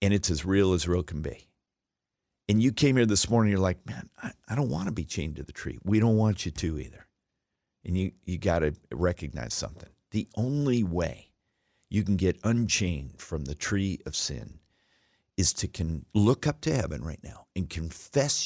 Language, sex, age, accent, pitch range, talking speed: English, male, 50-69, American, 80-110 Hz, 205 wpm